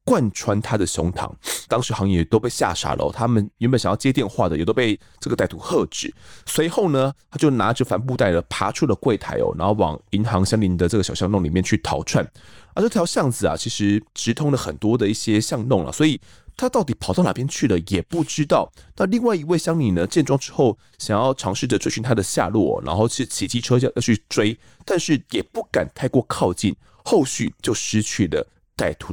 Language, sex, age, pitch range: Chinese, male, 20-39, 95-150 Hz